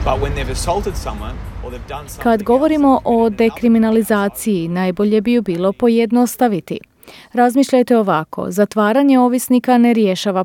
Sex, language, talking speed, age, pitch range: female, Croatian, 85 wpm, 30-49, 200-245 Hz